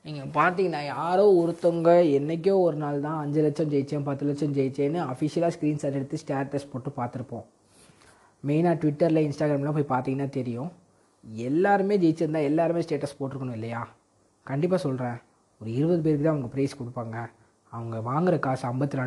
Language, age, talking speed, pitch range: Tamil, 20-39, 140 wpm, 120-155 Hz